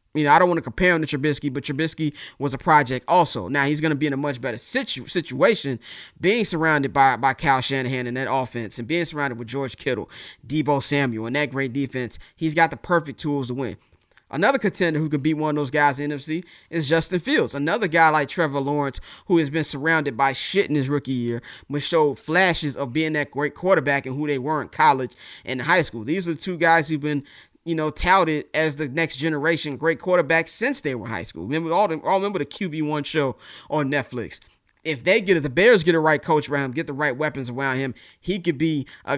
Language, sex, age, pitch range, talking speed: English, male, 20-39, 135-165 Hz, 235 wpm